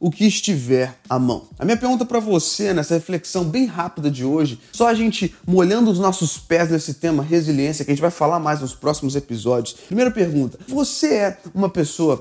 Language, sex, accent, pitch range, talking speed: Portuguese, male, Brazilian, 155-200 Hz, 200 wpm